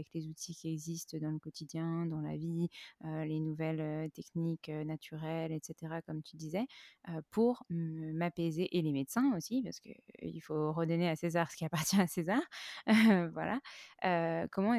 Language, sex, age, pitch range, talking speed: French, female, 20-39, 160-190 Hz, 165 wpm